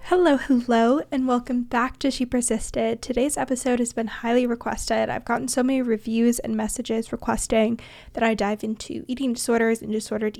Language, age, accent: English, 10-29, American